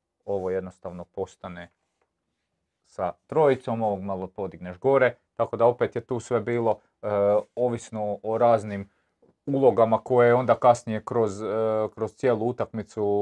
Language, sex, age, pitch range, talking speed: Croatian, male, 30-49, 95-115 Hz, 135 wpm